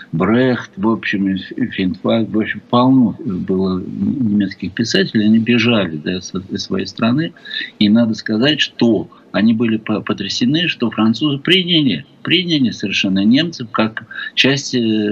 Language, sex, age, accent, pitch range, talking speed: Russian, male, 60-79, native, 95-115 Hz, 120 wpm